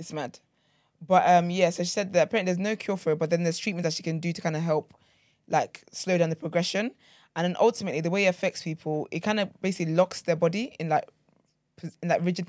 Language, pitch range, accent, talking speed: English, 160-195 Hz, British, 250 wpm